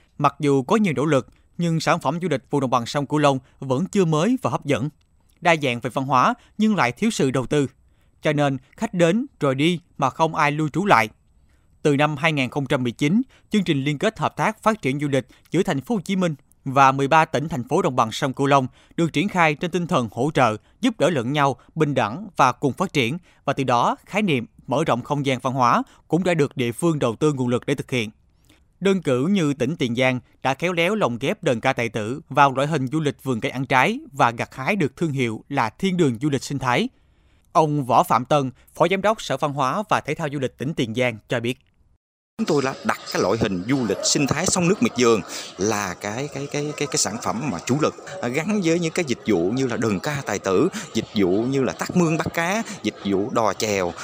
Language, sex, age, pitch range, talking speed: Vietnamese, male, 20-39, 125-165 Hz, 250 wpm